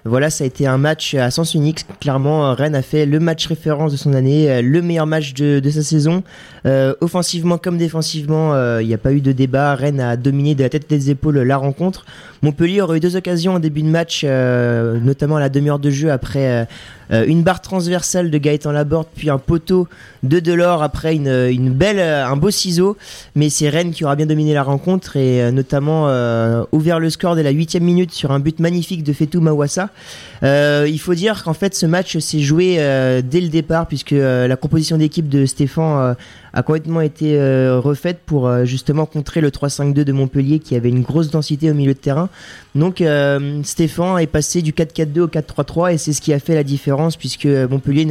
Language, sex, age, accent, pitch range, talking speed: French, male, 20-39, French, 135-160 Hz, 215 wpm